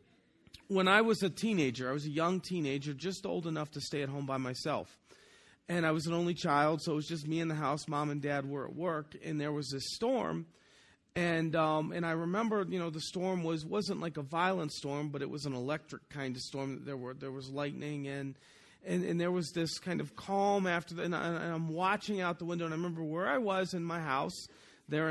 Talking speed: 240 wpm